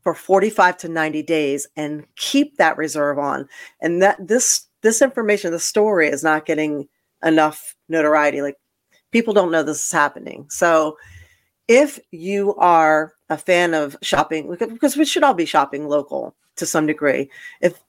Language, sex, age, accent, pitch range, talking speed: English, female, 40-59, American, 145-180 Hz, 160 wpm